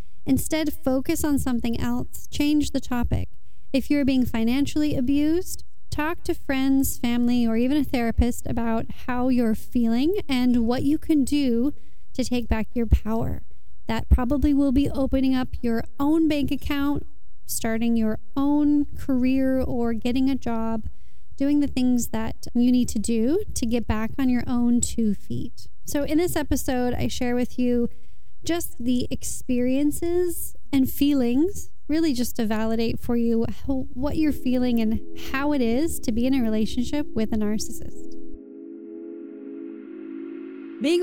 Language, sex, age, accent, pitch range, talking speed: English, female, 30-49, American, 235-295 Hz, 150 wpm